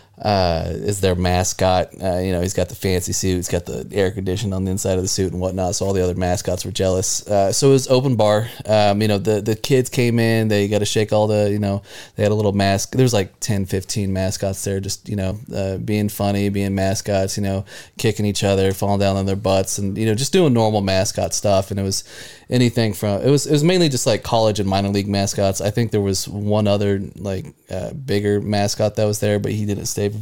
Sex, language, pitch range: male, English, 95-110 Hz